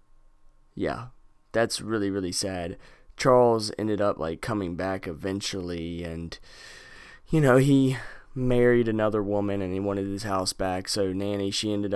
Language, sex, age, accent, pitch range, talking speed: English, male, 20-39, American, 95-115 Hz, 145 wpm